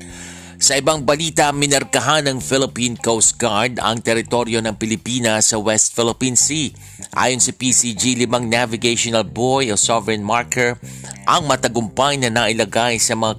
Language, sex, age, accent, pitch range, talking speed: Filipino, male, 50-69, native, 105-125 Hz, 145 wpm